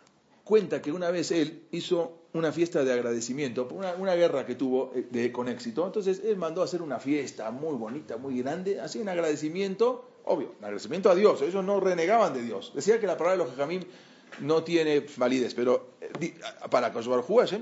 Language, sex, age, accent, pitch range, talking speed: English, male, 40-59, Argentinian, 115-180 Hz, 200 wpm